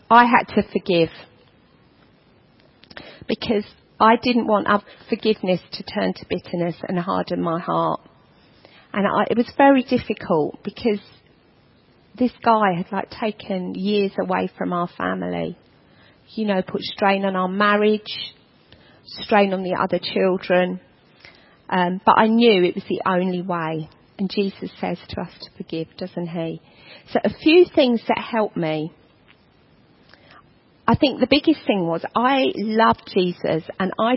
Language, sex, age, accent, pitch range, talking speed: English, female, 40-59, British, 175-220 Hz, 145 wpm